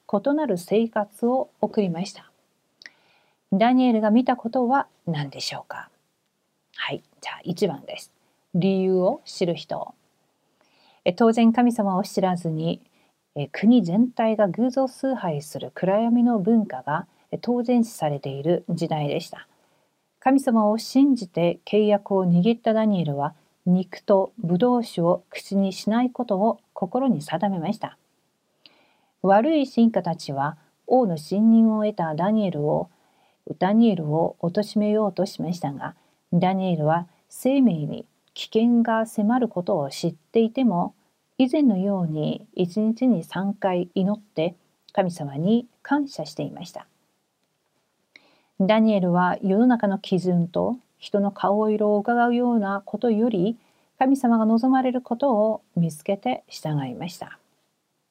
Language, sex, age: Korean, female, 40-59